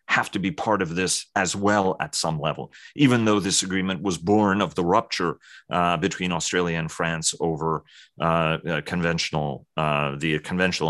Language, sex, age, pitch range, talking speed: English, male, 30-49, 80-100 Hz, 170 wpm